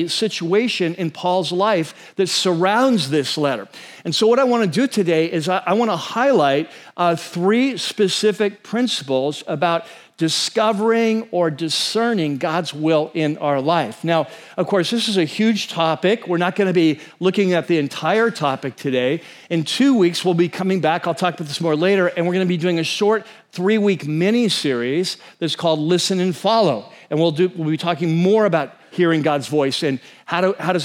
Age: 50-69